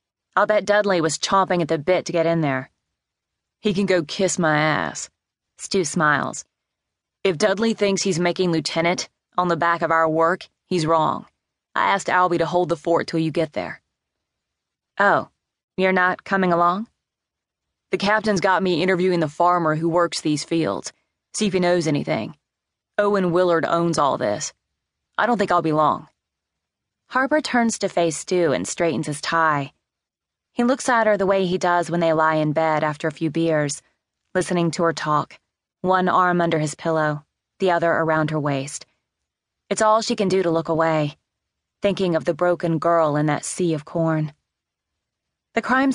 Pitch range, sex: 155-190 Hz, female